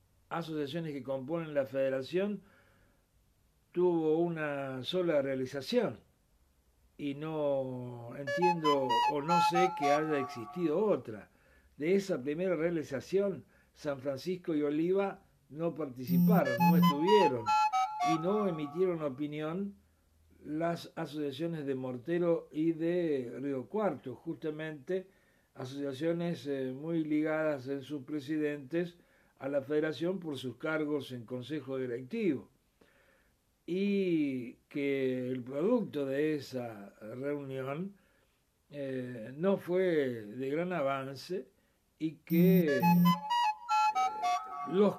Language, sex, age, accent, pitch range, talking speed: Spanish, male, 60-79, Argentinian, 135-170 Hz, 105 wpm